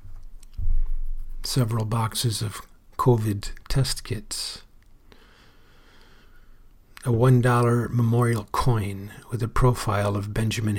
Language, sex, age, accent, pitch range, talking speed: English, male, 50-69, American, 105-120 Hz, 85 wpm